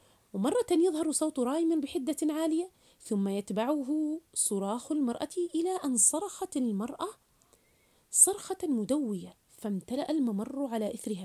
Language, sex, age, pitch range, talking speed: Arabic, female, 30-49, 200-295 Hz, 105 wpm